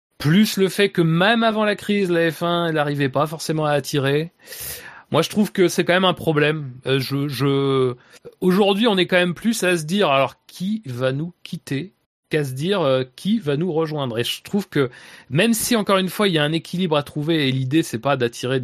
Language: French